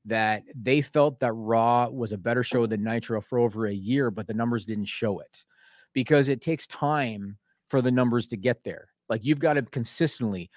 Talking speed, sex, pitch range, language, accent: 205 wpm, male, 115-145 Hz, English, American